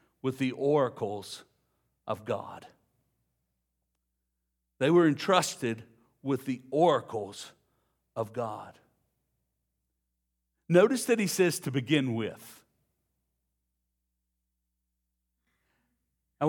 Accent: American